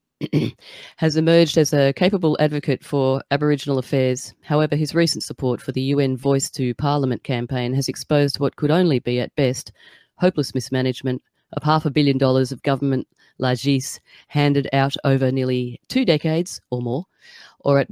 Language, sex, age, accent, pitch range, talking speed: English, female, 30-49, Australian, 125-150 Hz, 160 wpm